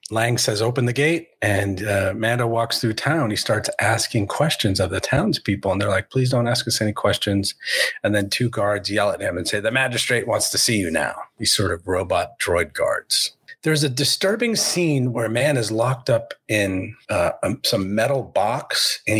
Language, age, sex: English, 40-59, male